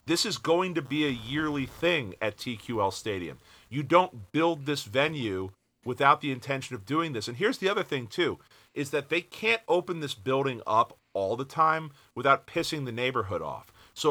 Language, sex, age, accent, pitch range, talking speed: English, male, 40-59, American, 120-155 Hz, 190 wpm